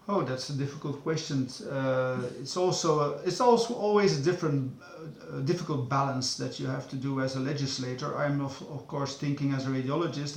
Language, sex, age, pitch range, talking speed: English, male, 50-69, 140-165 Hz, 190 wpm